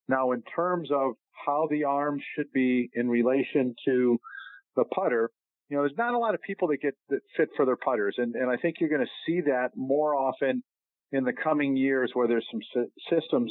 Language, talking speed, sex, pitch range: English, 215 wpm, male, 125-155 Hz